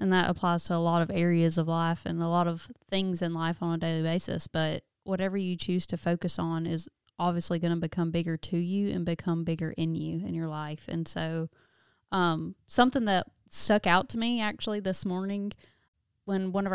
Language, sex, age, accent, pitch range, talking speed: English, female, 20-39, American, 175-205 Hz, 210 wpm